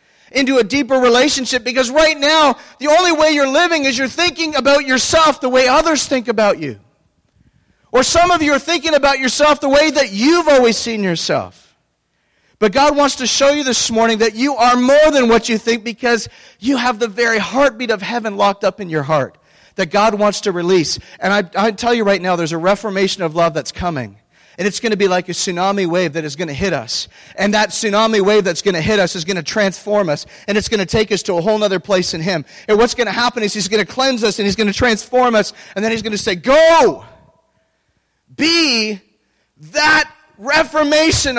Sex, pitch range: male, 190-270 Hz